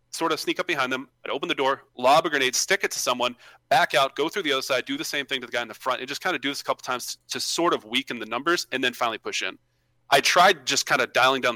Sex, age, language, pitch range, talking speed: male, 30-49, English, 120-165 Hz, 320 wpm